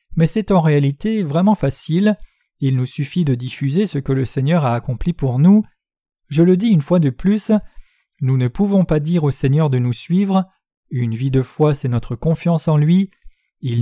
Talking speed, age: 200 wpm, 40-59